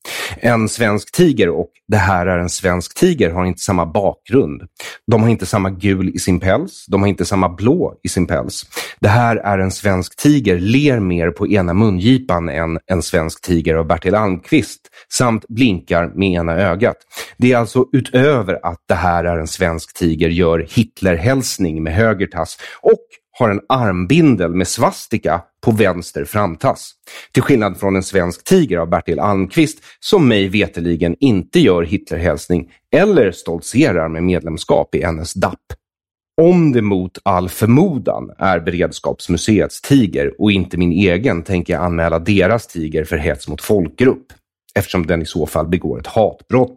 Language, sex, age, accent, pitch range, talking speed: English, male, 30-49, Swedish, 85-115 Hz, 165 wpm